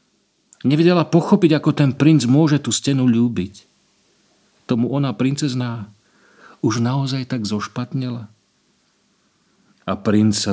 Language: Slovak